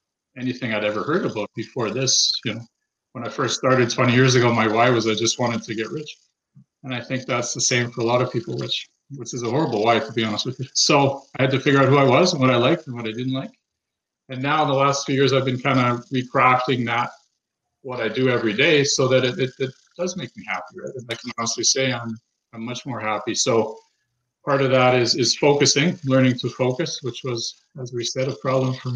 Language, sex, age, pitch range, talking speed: English, male, 40-59, 115-135 Hz, 250 wpm